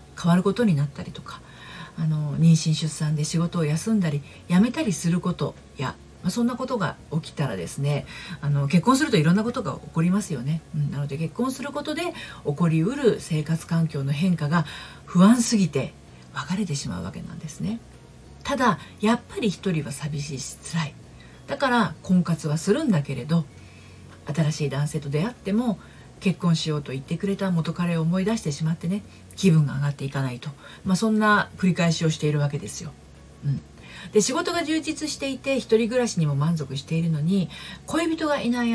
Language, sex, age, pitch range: Japanese, female, 40-59, 145-200 Hz